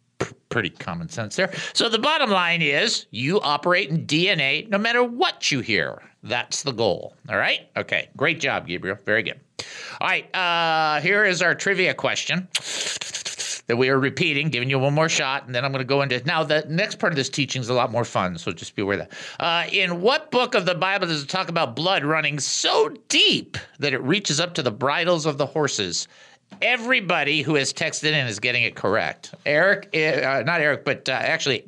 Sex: male